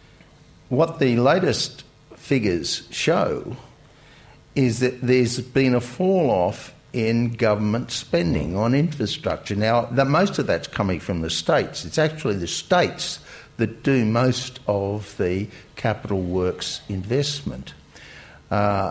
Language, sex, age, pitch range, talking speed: English, male, 60-79, 115-145 Hz, 125 wpm